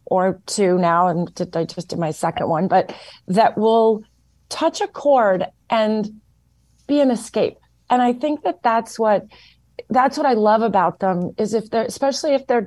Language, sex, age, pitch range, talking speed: English, female, 30-49, 175-225 Hz, 180 wpm